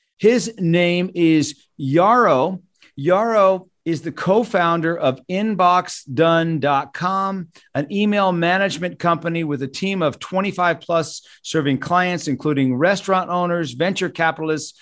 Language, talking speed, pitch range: English, 110 wpm, 155-190 Hz